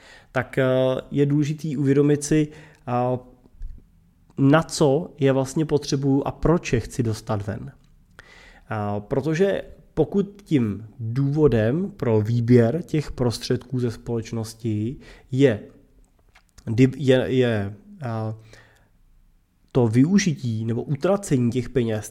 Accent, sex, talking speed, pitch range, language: native, male, 100 wpm, 115-145 Hz, Czech